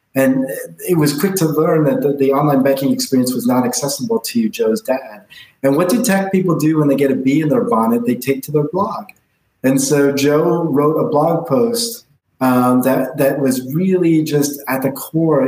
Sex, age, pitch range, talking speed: male, 30-49, 130-170 Hz, 205 wpm